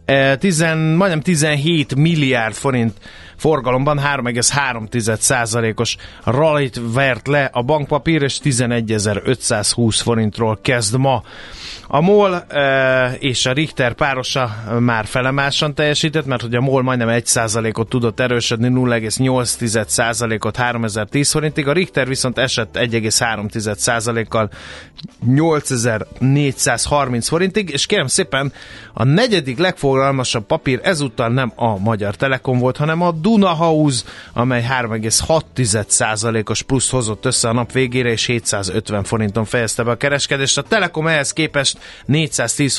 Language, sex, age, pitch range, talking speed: Hungarian, male, 30-49, 115-145 Hz, 115 wpm